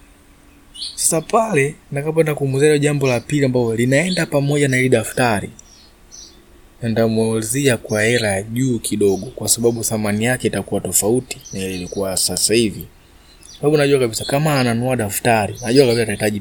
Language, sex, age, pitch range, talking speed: Swahili, male, 20-39, 100-125 Hz, 125 wpm